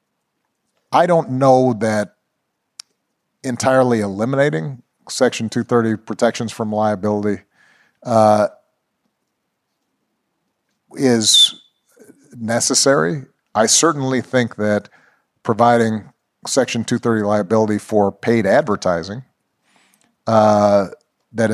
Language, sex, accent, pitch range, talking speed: English, male, American, 105-130 Hz, 75 wpm